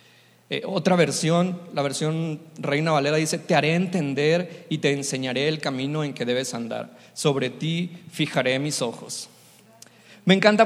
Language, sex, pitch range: Spanish, male, 145-175 Hz